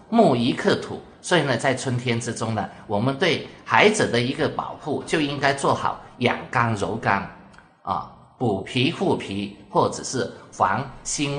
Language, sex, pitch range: Chinese, male, 105-150 Hz